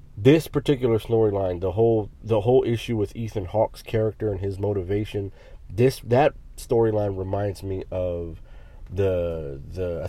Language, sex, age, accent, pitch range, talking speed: English, male, 30-49, American, 90-110 Hz, 145 wpm